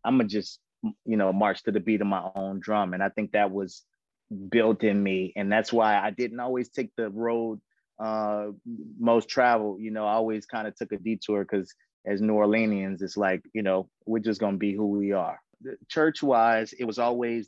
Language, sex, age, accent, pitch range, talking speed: English, male, 30-49, American, 100-115 Hz, 220 wpm